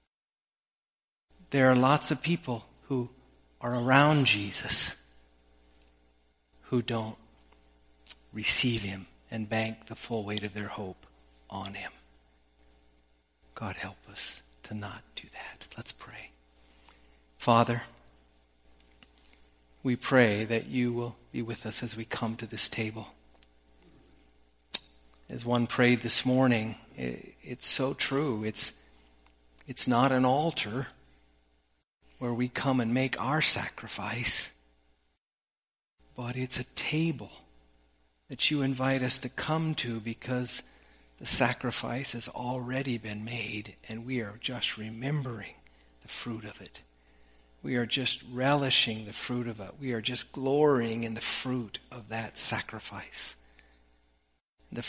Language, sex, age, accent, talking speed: English, male, 50-69, American, 125 wpm